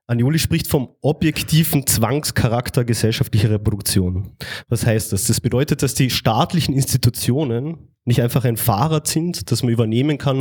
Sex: male